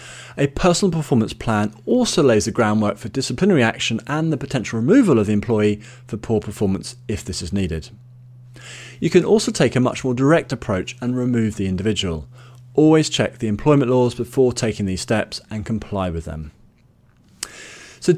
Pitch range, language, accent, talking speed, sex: 110-140 Hz, English, British, 170 wpm, male